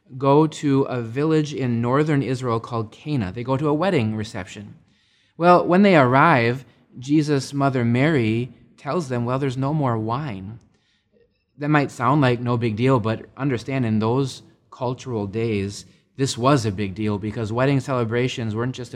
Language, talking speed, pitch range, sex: English, 165 wpm, 110-140 Hz, male